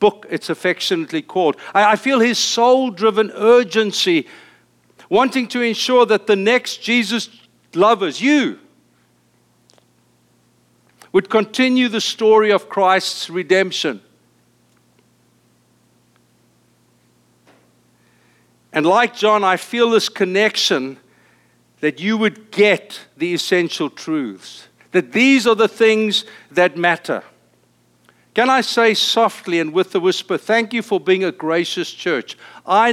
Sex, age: male, 60-79